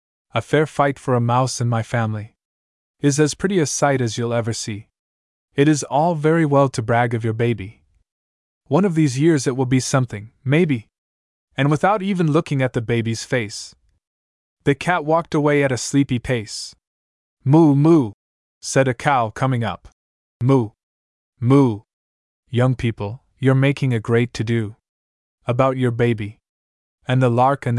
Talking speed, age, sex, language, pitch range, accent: 165 wpm, 20-39, male, English, 95-145 Hz, American